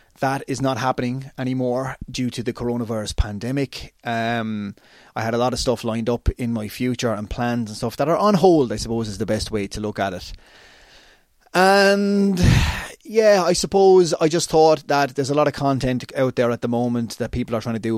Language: English